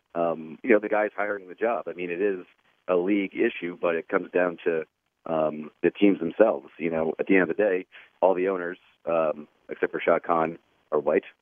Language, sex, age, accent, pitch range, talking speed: English, male, 40-59, American, 80-100 Hz, 220 wpm